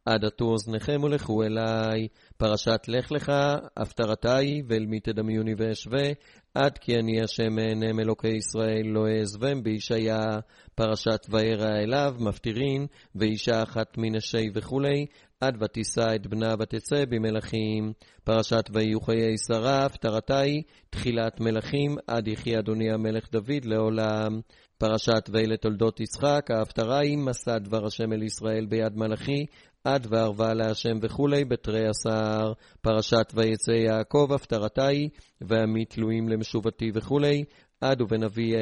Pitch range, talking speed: 110-125 Hz, 110 wpm